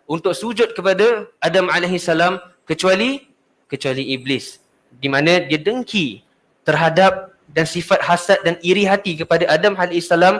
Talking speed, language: 125 wpm, Malay